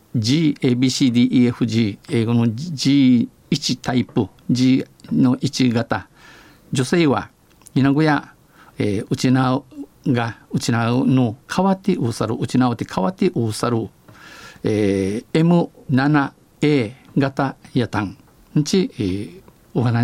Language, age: Japanese, 50-69